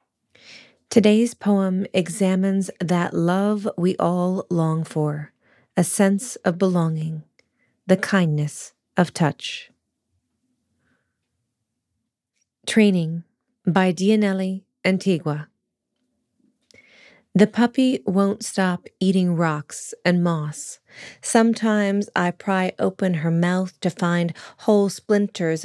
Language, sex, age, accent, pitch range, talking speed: English, female, 30-49, American, 175-210 Hz, 90 wpm